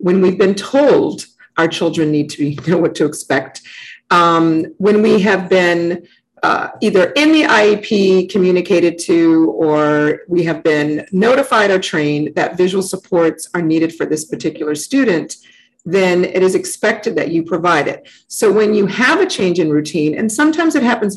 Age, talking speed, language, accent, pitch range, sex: 50-69, 170 wpm, English, American, 165-225 Hz, female